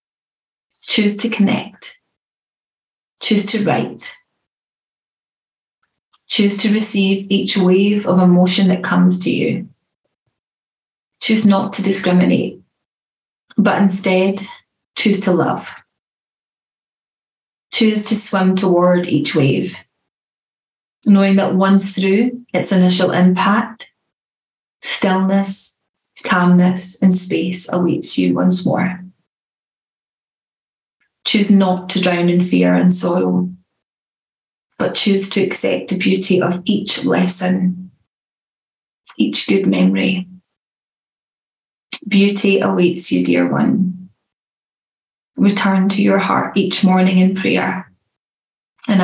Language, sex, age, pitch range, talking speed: English, female, 30-49, 180-200 Hz, 100 wpm